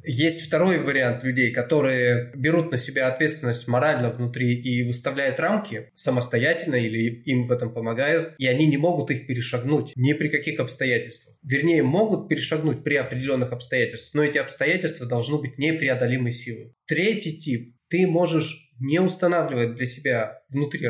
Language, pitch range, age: Russian, 125-155 Hz, 20-39